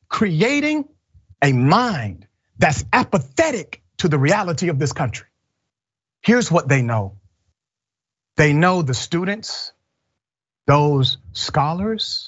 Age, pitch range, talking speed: 40-59, 100-140 Hz, 105 wpm